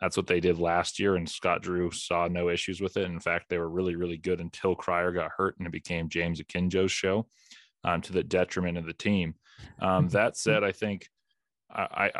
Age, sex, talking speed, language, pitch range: 20-39, male, 215 wpm, English, 85-95 Hz